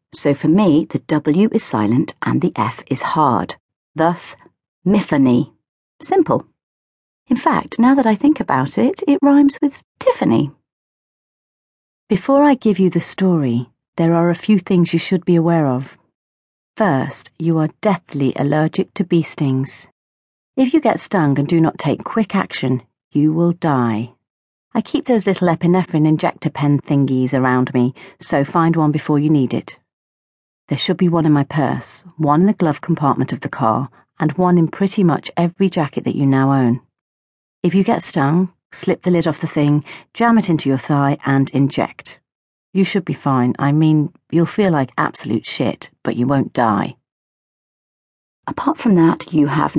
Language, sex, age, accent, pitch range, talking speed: English, female, 40-59, British, 140-190 Hz, 175 wpm